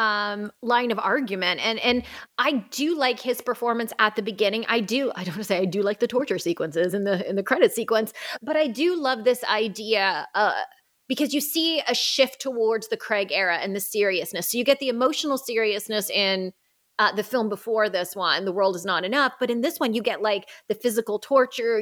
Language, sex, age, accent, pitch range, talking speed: English, female, 30-49, American, 210-260 Hz, 220 wpm